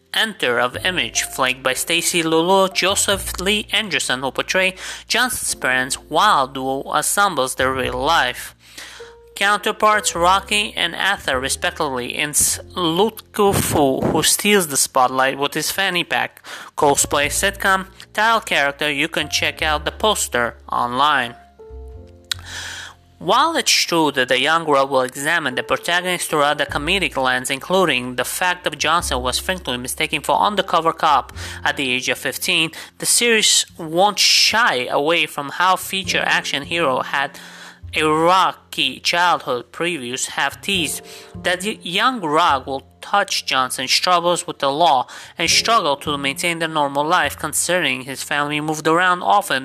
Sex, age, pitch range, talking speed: male, 30-49, 135-185 Hz, 145 wpm